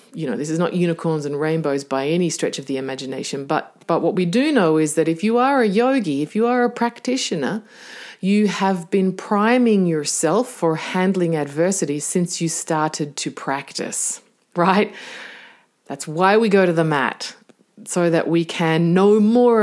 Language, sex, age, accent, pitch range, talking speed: English, female, 30-49, Australian, 160-220 Hz, 180 wpm